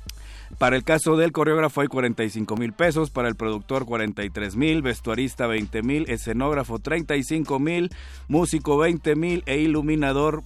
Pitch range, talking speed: 120-150 Hz, 145 wpm